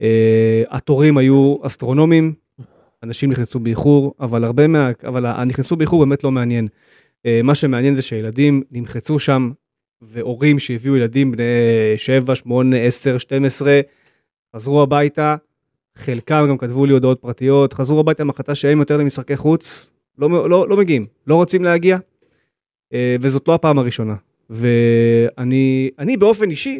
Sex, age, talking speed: male, 30-49, 135 wpm